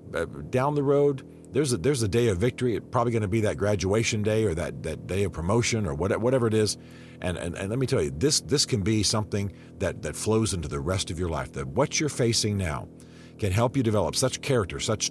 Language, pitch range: English, 80-110 Hz